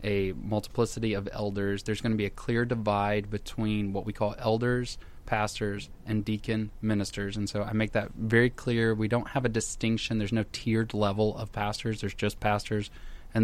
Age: 20-39